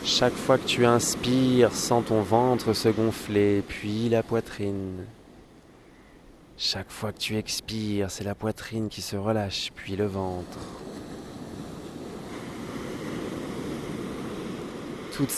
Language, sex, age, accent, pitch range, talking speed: French, male, 20-39, French, 95-110 Hz, 110 wpm